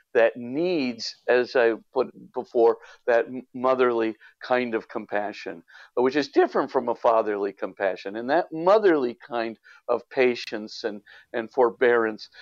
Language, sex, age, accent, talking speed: English, male, 50-69, American, 130 wpm